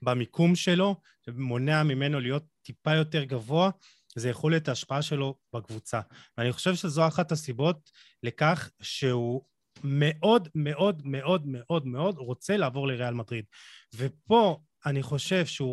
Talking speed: 130 wpm